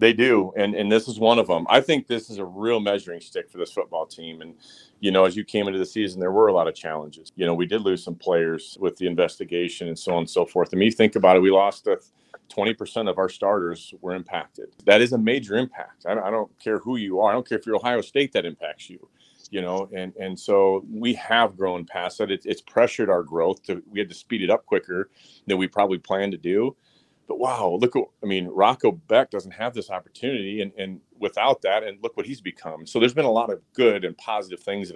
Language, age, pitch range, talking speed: English, 40-59, 90-110 Hz, 255 wpm